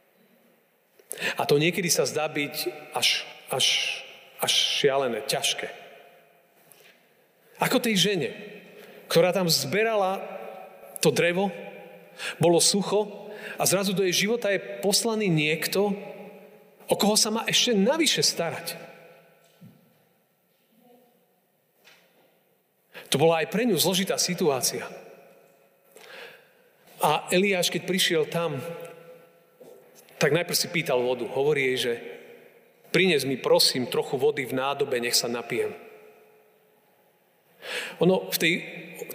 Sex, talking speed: male, 105 wpm